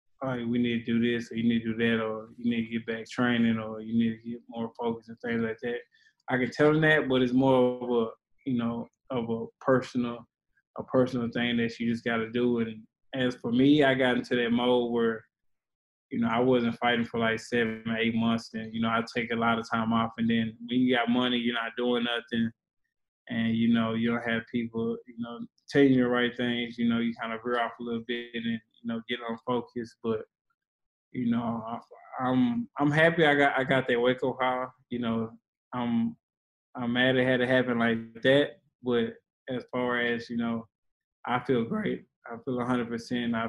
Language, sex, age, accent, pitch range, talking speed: English, male, 20-39, American, 115-125 Hz, 220 wpm